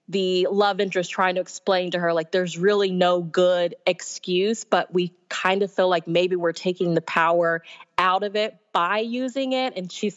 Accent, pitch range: American, 165-195 Hz